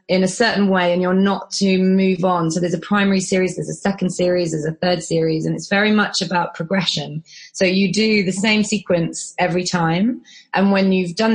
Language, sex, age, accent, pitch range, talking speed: English, female, 20-39, British, 175-195 Hz, 215 wpm